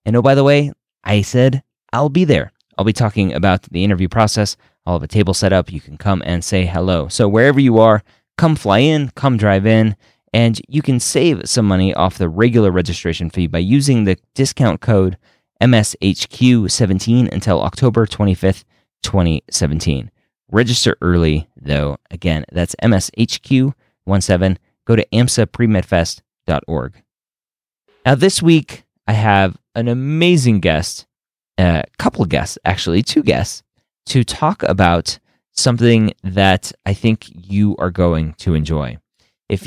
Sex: male